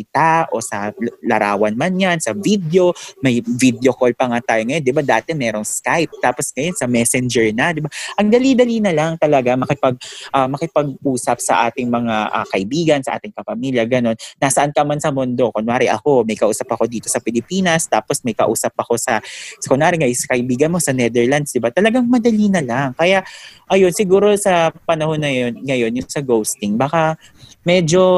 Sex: male